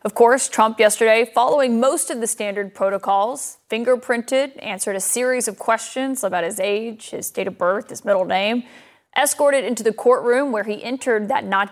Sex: female